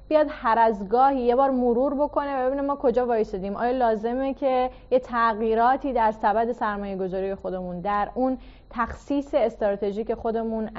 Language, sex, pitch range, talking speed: Persian, female, 205-250 Hz, 150 wpm